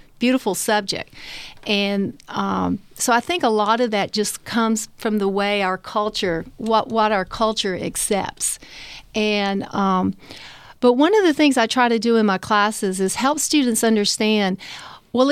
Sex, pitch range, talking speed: female, 200-245 Hz, 165 wpm